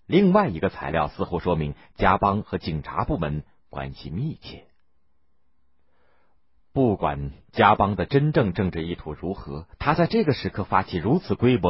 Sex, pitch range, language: male, 75-115 Hz, Chinese